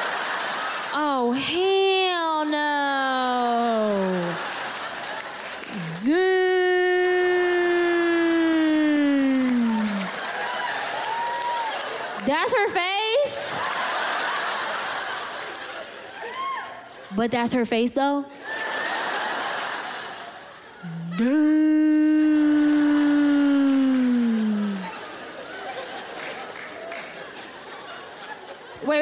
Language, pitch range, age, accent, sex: English, 245-355 Hz, 20-39, American, female